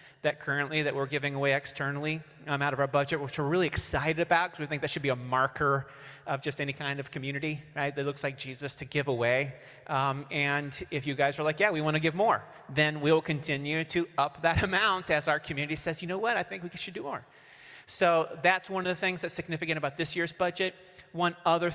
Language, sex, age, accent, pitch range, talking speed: English, male, 30-49, American, 135-160 Hz, 235 wpm